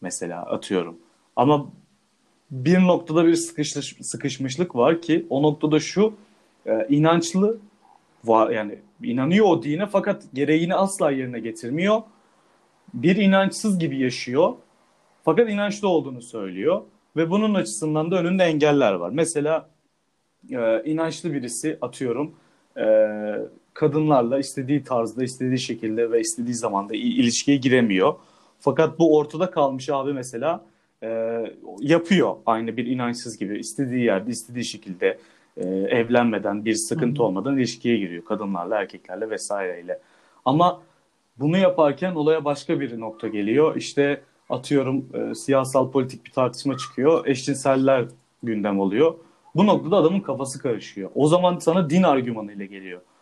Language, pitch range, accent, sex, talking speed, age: Turkish, 120-165 Hz, native, male, 125 wpm, 40-59